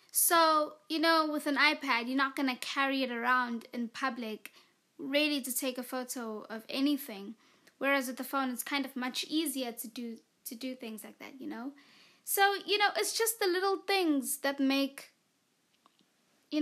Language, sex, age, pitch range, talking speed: English, female, 20-39, 240-300 Hz, 185 wpm